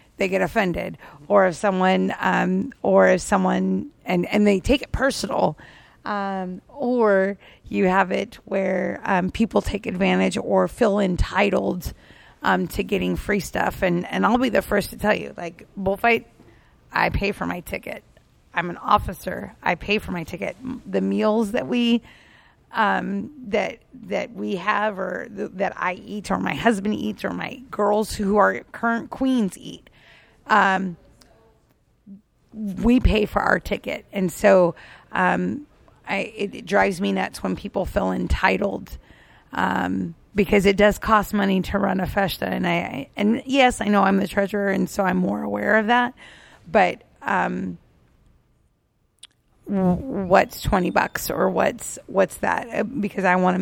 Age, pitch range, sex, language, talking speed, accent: 30-49, 180-215 Hz, female, English, 160 wpm, American